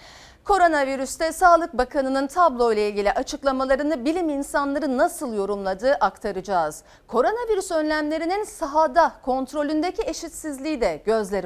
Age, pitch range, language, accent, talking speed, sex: 40-59, 200-315 Hz, Turkish, native, 100 wpm, female